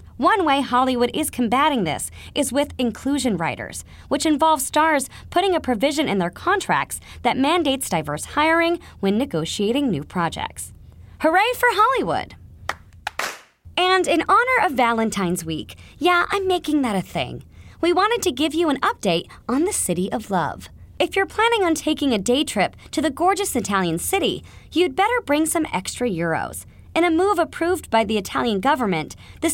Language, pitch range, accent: English, 215-345 Hz, American